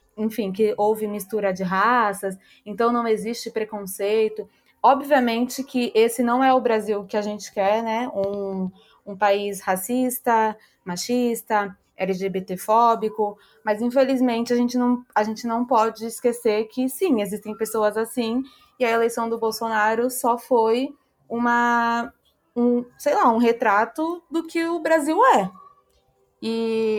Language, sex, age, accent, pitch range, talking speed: Portuguese, female, 20-39, Brazilian, 205-240 Hz, 130 wpm